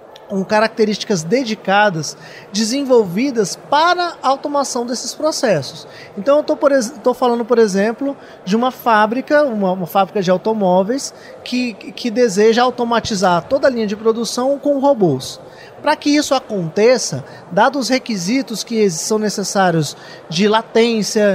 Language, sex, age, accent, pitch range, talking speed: Portuguese, male, 20-39, Brazilian, 195-270 Hz, 130 wpm